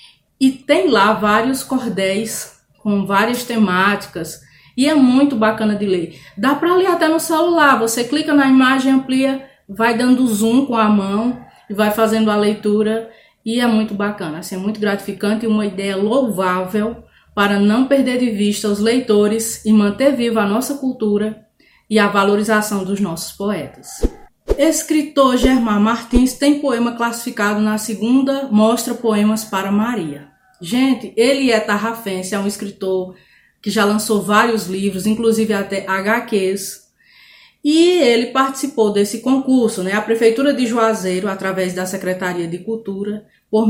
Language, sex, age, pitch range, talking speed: Portuguese, female, 20-39, 200-245 Hz, 150 wpm